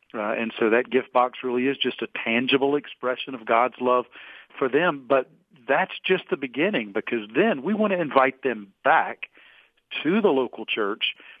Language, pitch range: English, 115-135 Hz